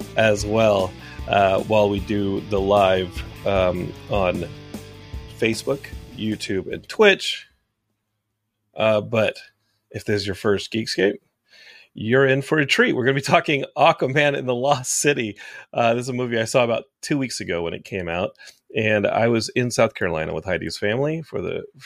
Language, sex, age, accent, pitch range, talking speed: English, male, 30-49, American, 105-135 Hz, 175 wpm